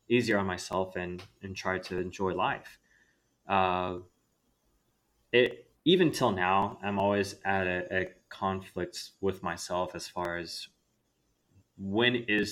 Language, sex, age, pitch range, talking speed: English, male, 20-39, 90-105 Hz, 130 wpm